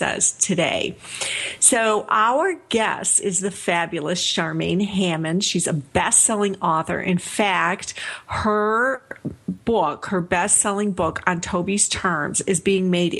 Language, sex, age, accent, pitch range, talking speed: English, female, 50-69, American, 175-210 Hz, 125 wpm